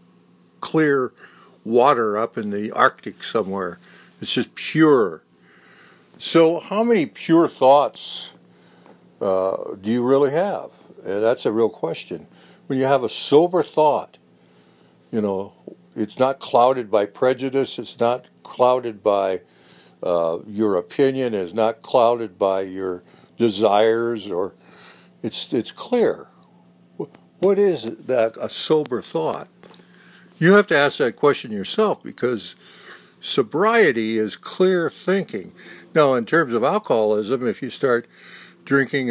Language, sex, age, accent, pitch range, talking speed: English, male, 60-79, American, 95-135 Hz, 125 wpm